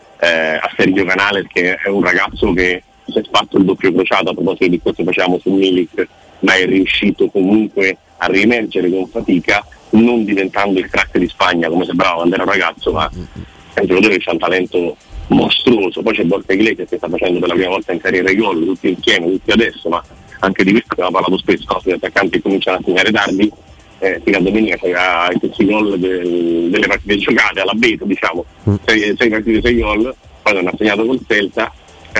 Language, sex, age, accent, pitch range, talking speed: Italian, male, 40-59, native, 90-110 Hz, 200 wpm